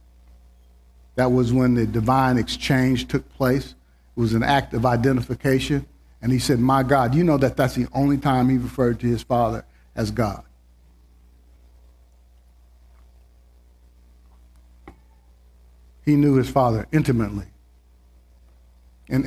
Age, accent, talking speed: 50-69, American, 120 wpm